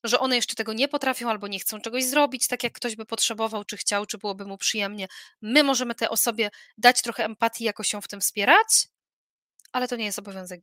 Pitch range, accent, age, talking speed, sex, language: 220-275 Hz, native, 20-39, 220 wpm, female, Polish